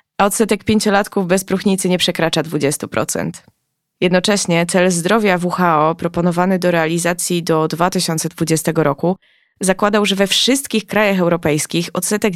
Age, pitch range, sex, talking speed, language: 20-39, 165-200 Hz, female, 120 wpm, Polish